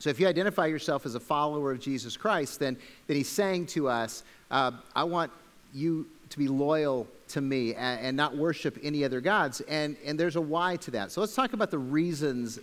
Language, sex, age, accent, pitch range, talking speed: English, male, 40-59, American, 140-180 Hz, 220 wpm